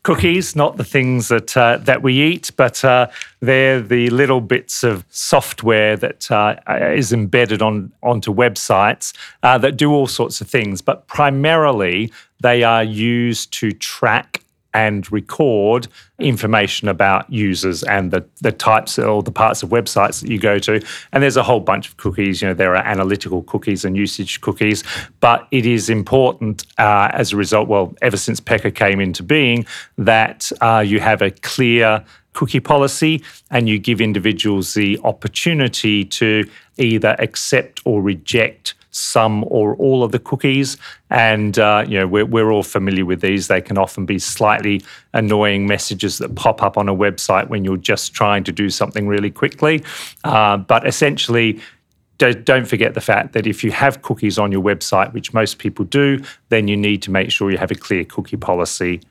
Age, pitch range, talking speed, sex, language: 40-59, 100-120 Hz, 180 wpm, male, English